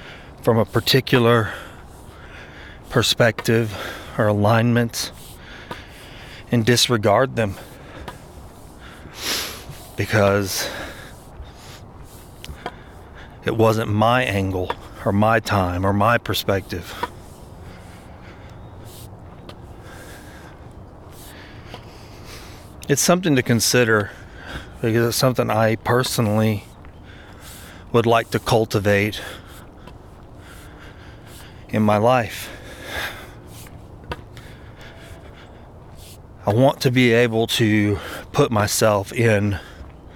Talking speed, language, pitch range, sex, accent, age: 65 wpm, English, 95-115 Hz, male, American, 30-49